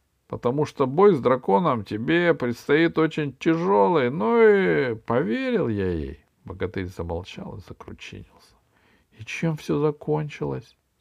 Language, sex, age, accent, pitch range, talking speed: Russian, male, 50-69, native, 95-145 Hz, 120 wpm